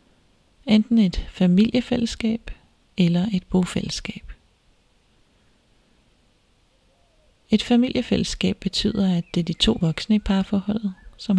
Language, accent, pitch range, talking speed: Danish, native, 180-210 Hz, 95 wpm